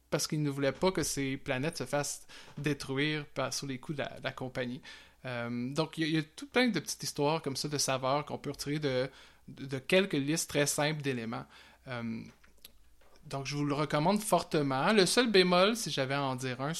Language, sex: French, male